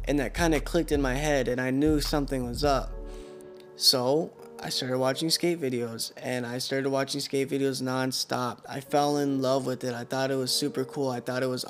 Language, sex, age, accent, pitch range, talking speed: English, male, 20-39, American, 130-150 Hz, 220 wpm